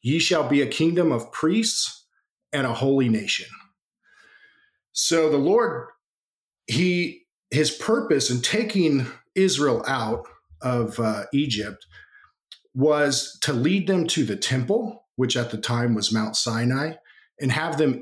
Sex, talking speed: male, 135 wpm